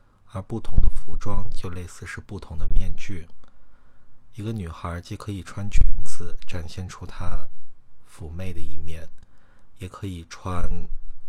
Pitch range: 85-105 Hz